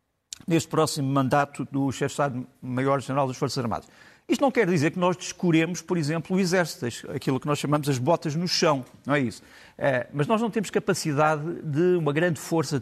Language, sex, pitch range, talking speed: Portuguese, male, 140-180 Hz, 200 wpm